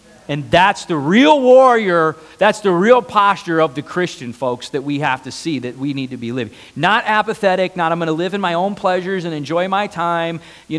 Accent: American